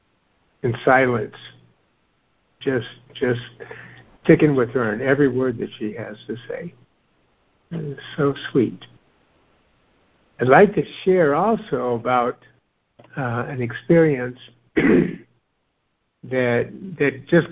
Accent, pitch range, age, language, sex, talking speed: American, 125-155 Hz, 60-79, English, male, 105 wpm